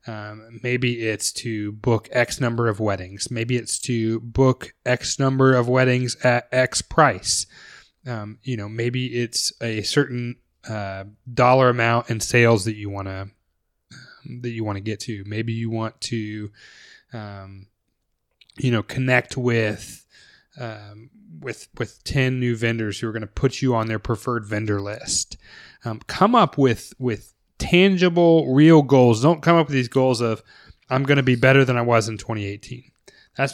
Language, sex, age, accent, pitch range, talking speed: English, male, 20-39, American, 110-130 Hz, 170 wpm